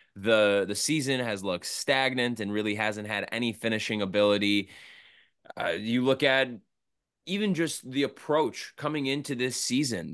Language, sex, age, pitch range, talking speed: English, male, 20-39, 110-140 Hz, 150 wpm